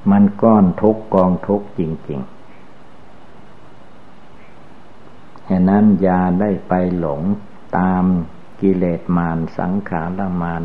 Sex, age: male, 60-79